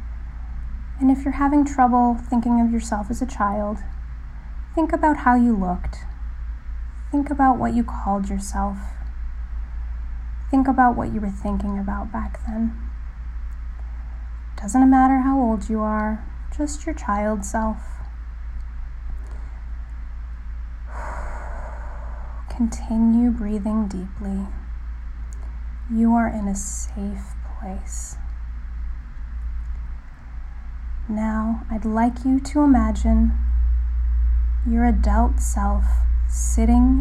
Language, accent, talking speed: English, American, 95 wpm